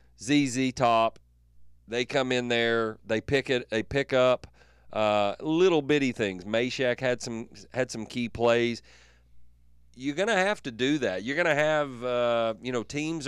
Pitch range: 95-130 Hz